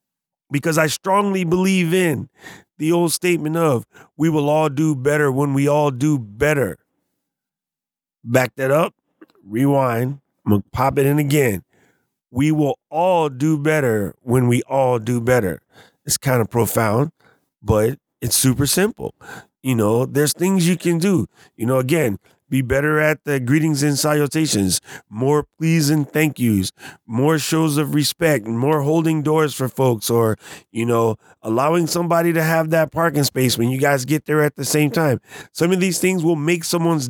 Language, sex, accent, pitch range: English, male, American, 125-160 Hz